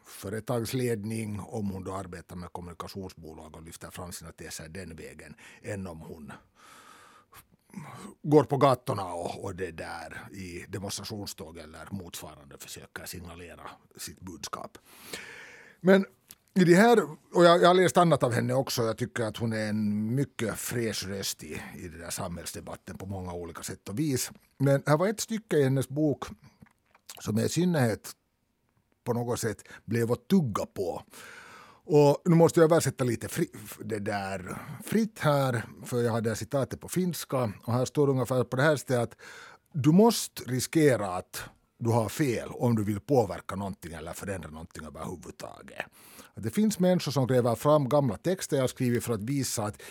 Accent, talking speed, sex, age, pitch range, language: Finnish, 165 wpm, male, 60-79, 100-145 Hz, Swedish